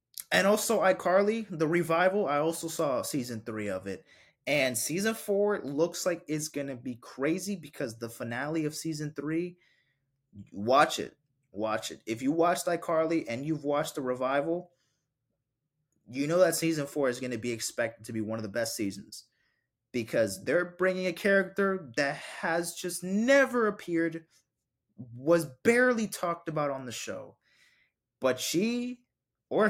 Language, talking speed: English, 160 wpm